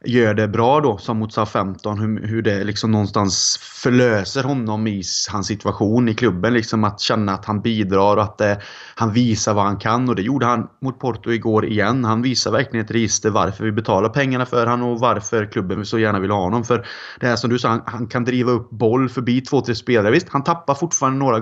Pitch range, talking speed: 110-125 Hz, 220 wpm